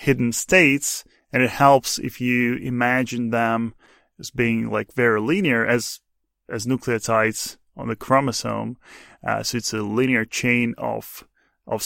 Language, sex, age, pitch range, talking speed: English, male, 20-39, 115-130 Hz, 140 wpm